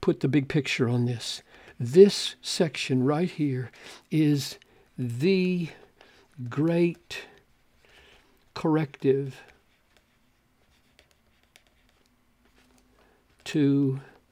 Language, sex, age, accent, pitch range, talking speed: English, male, 60-79, American, 140-180 Hz, 65 wpm